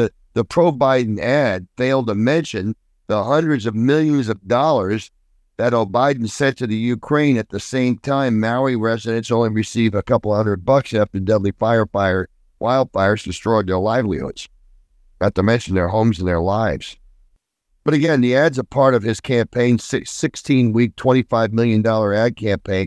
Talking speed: 155 wpm